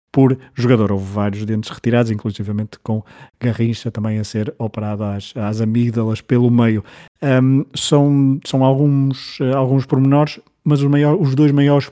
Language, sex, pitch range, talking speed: Portuguese, male, 115-130 Hz, 145 wpm